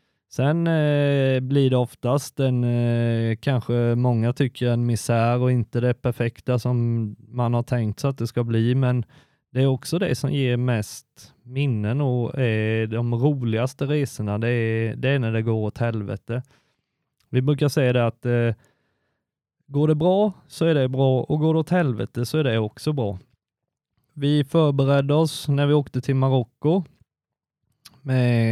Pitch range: 115-140 Hz